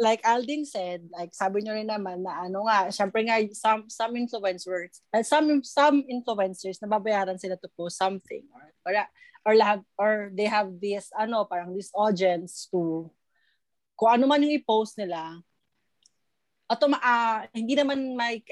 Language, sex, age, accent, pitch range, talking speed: Filipino, female, 20-39, native, 190-255 Hz, 160 wpm